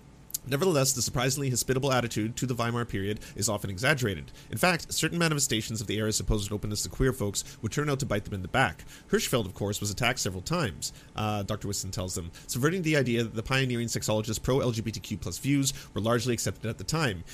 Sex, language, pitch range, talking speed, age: male, English, 105-135 Hz, 210 wpm, 30-49